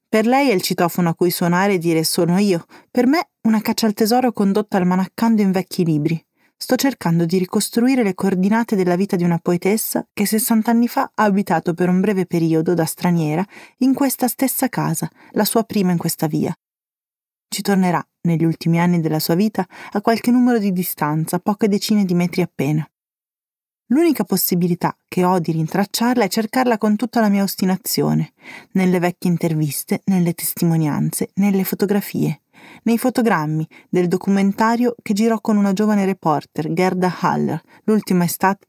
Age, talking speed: 30-49, 170 wpm